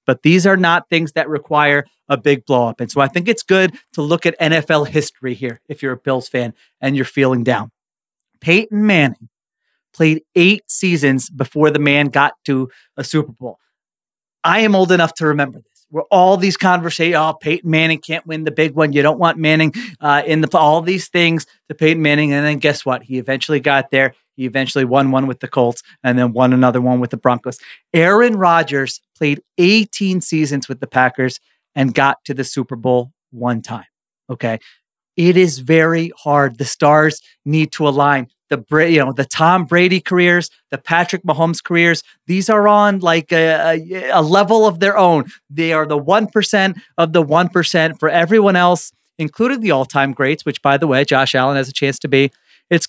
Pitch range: 135-170 Hz